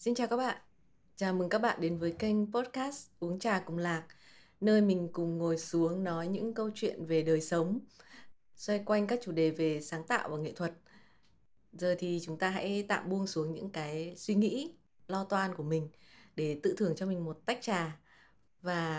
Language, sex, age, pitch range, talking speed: Vietnamese, female, 20-39, 165-205 Hz, 200 wpm